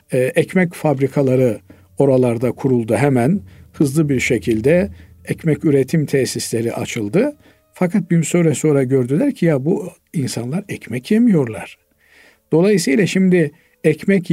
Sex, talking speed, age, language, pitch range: male, 110 wpm, 50-69, Turkish, 130-180 Hz